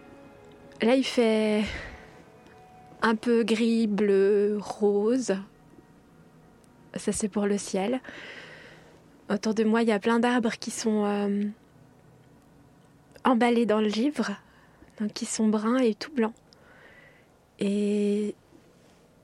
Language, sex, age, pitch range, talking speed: French, female, 20-39, 210-245 Hz, 110 wpm